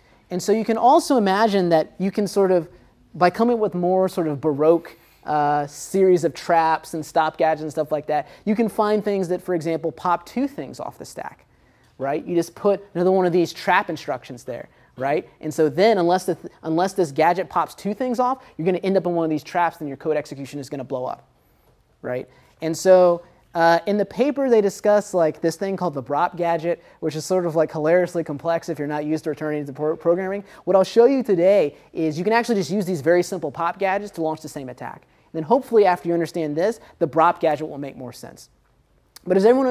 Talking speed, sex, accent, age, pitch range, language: 235 wpm, male, American, 30-49, 155-195 Hz, English